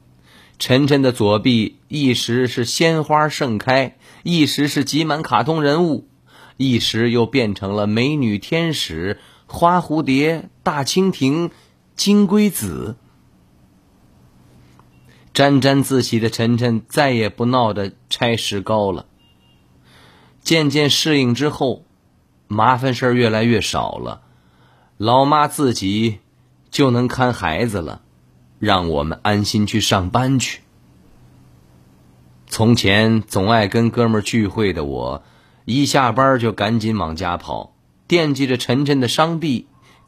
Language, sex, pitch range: Chinese, male, 100-140 Hz